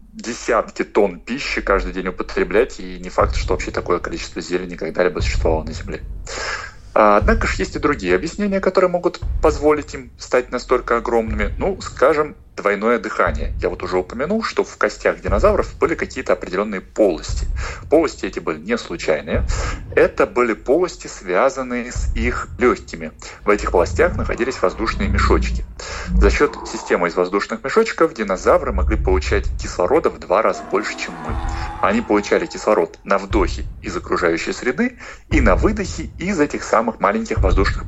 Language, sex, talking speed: Russian, male, 155 wpm